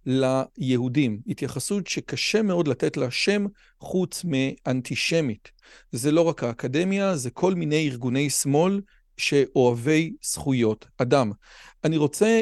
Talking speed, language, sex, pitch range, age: 110 wpm, Hebrew, male, 135-185 Hz, 40-59